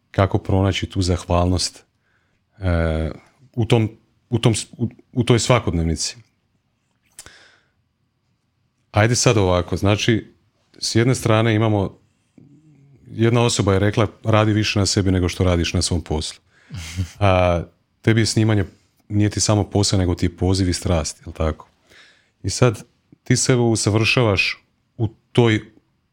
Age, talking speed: 40-59, 130 wpm